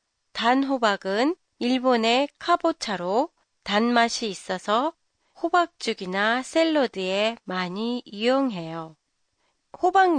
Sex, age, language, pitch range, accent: female, 30-49, Japanese, 190-275 Hz, Korean